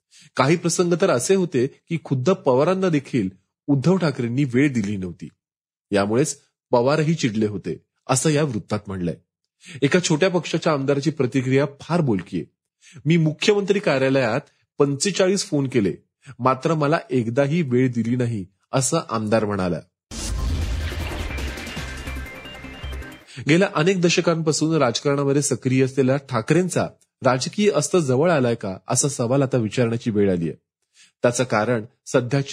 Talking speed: 120 wpm